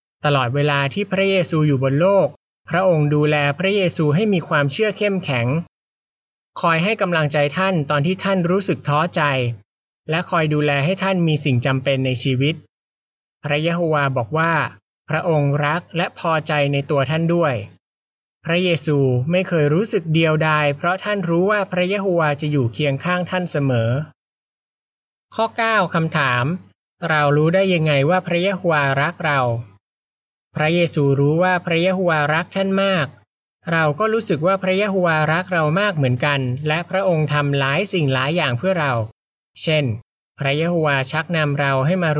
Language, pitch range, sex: Thai, 140-180 Hz, male